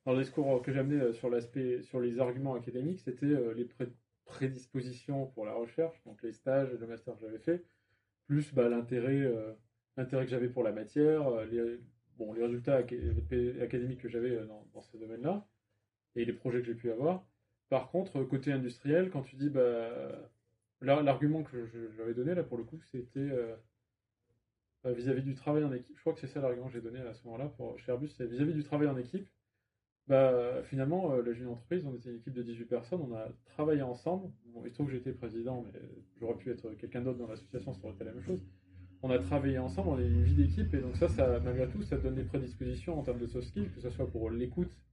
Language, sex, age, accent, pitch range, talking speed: French, male, 20-39, French, 115-135 Hz, 215 wpm